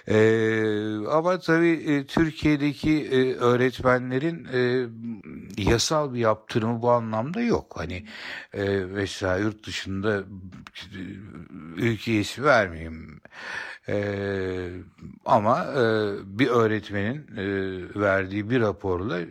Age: 60-79